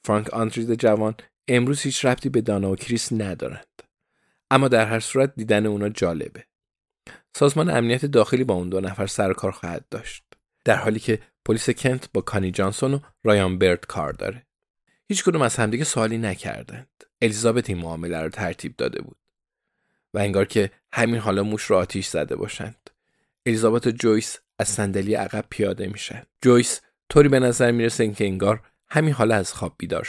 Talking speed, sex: 165 wpm, male